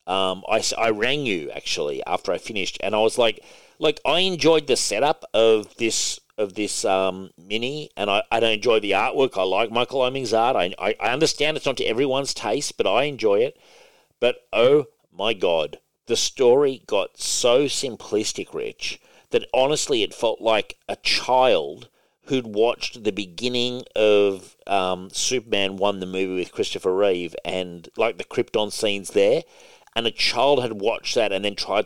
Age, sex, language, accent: 40-59, male, English, Australian